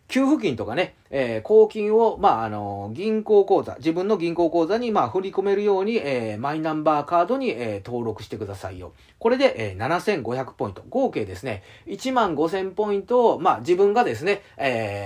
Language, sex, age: Japanese, male, 40-59